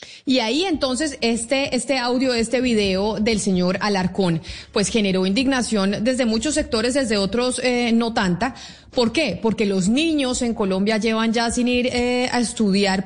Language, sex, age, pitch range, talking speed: Spanish, female, 30-49, 190-235 Hz, 165 wpm